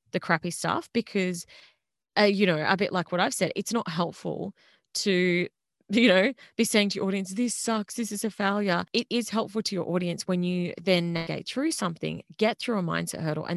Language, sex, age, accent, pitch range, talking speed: English, female, 20-39, Australian, 175-250 Hz, 210 wpm